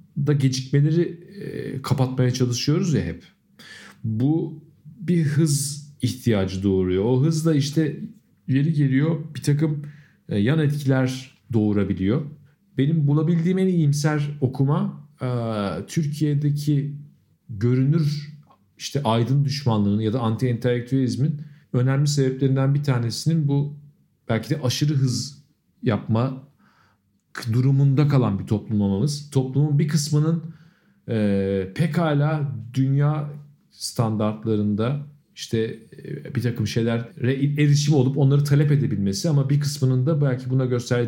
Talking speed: 105 wpm